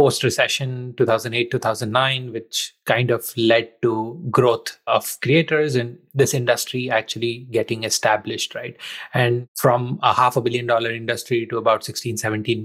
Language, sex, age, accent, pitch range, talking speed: English, male, 20-39, Indian, 115-130 Hz, 135 wpm